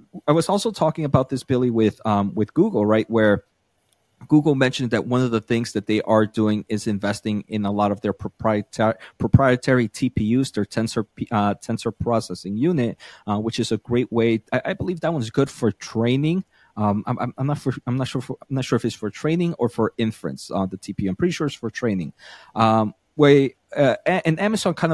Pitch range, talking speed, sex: 105-130 Hz, 215 wpm, male